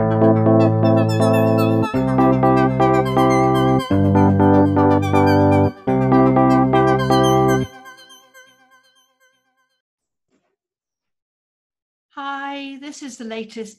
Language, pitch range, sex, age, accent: English, 150-215 Hz, female, 60-79, British